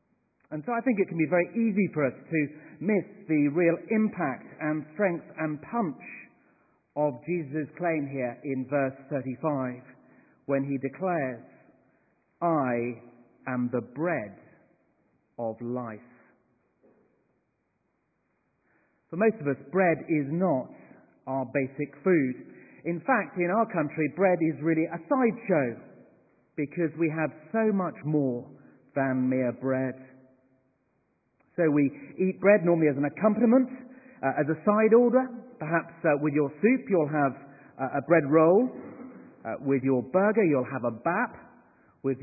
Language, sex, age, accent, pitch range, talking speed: English, male, 50-69, British, 135-200 Hz, 140 wpm